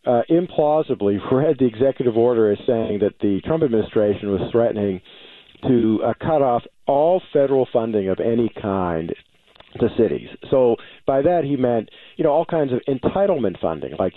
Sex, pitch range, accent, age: male, 105-145 Hz, American, 50-69